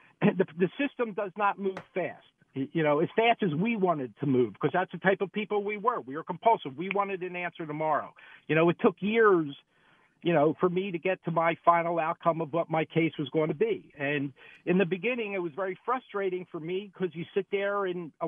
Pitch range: 160-205 Hz